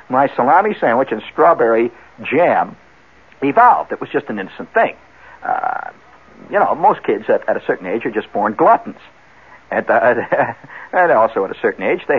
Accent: American